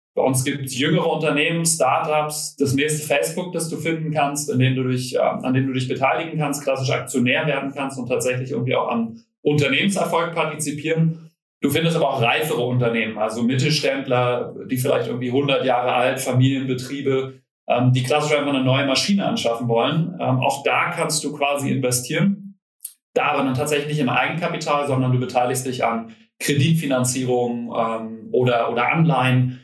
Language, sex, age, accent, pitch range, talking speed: German, male, 30-49, German, 125-150 Hz, 155 wpm